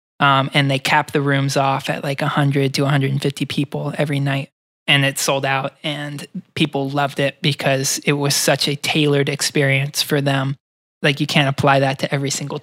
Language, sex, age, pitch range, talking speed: English, male, 20-39, 135-150 Hz, 190 wpm